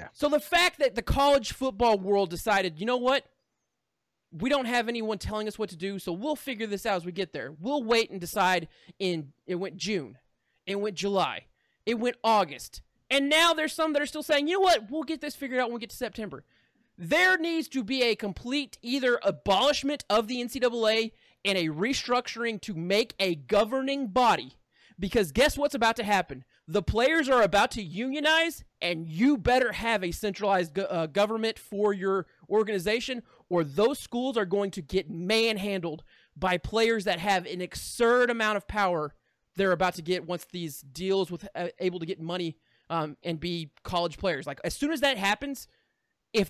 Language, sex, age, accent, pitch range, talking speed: English, male, 20-39, American, 185-250 Hz, 190 wpm